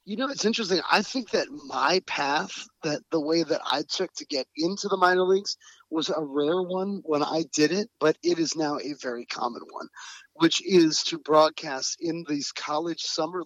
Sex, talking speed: male, 200 wpm